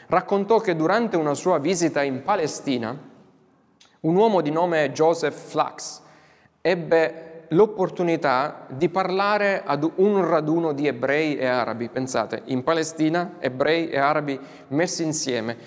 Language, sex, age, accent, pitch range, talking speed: Italian, male, 20-39, native, 145-185 Hz, 125 wpm